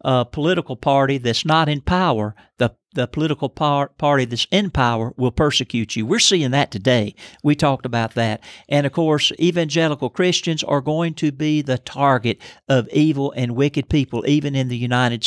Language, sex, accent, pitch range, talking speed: English, male, American, 130-160 Hz, 180 wpm